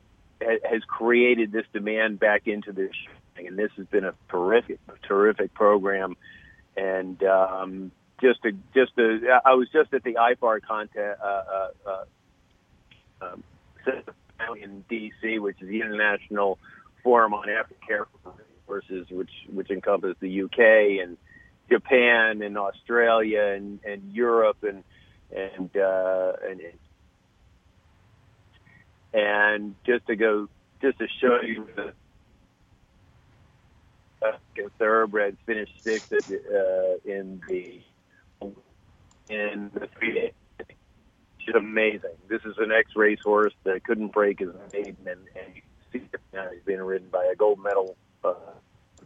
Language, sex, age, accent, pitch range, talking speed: English, male, 50-69, American, 95-115 Hz, 125 wpm